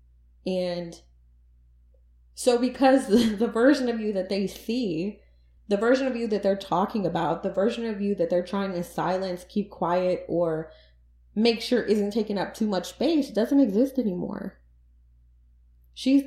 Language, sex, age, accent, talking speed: English, female, 20-39, American, 155 wpm